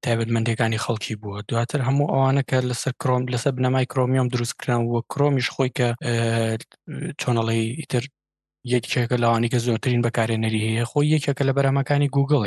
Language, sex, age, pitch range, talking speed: Arabic, male, 20-39, 115-140 Hz, 165 wpm